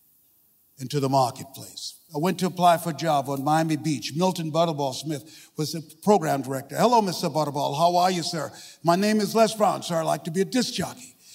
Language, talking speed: English, 210 wpm